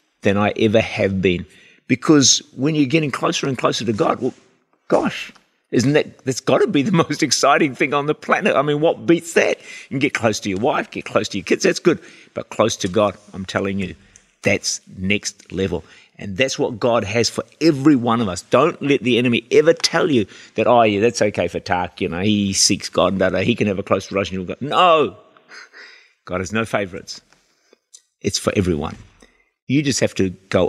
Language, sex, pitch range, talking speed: English, male, 95-120 Hz, 210 wpm